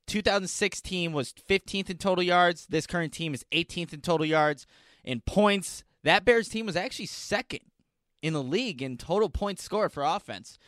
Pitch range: 145-200 Hz